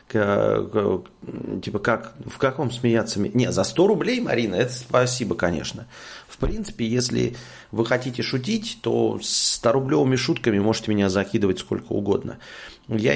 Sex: male